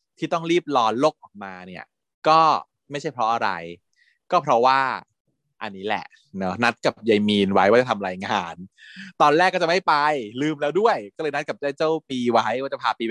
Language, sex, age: Thai, male, 20-39